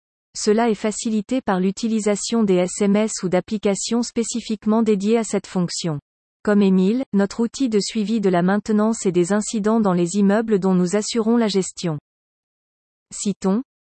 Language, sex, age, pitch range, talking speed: French, female, 40-59, 190-225 Hz, 150 wpm